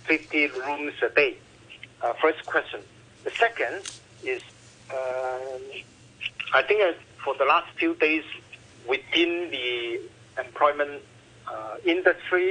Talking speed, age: 110 wpm, 50-69